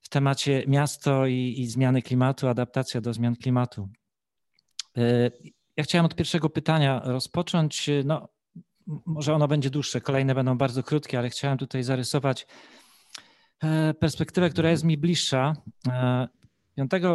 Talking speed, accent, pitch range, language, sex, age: 125 wpm, native, 125-150 Hz, Polish, male, 40-59